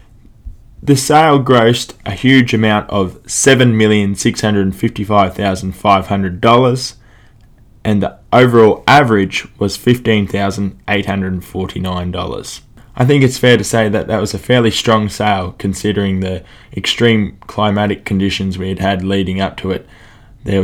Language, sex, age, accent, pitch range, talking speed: English, male, 20-39, Australian, 100-115 Hz, 155 wpm